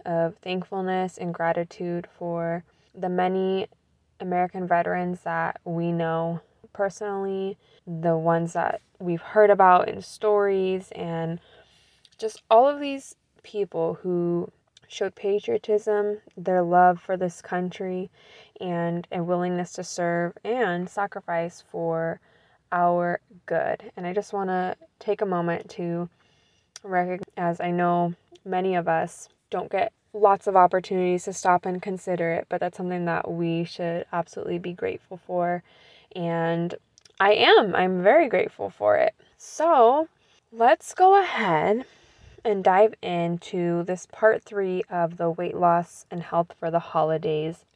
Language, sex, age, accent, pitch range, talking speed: English, female, 20-39, American, 170-200 Hz, 135 wpm